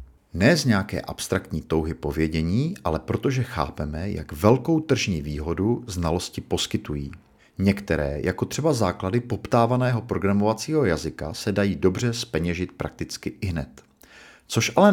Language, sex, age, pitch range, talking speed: Czech, male, 50-69, 80-110 Hz, 125 wpm